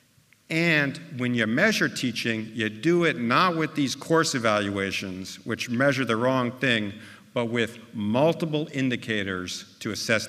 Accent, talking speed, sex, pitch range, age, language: American, 140 wpm, male, 110-150 Hz, 50-69, English